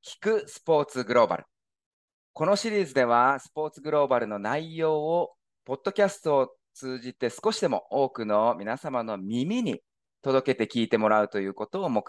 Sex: male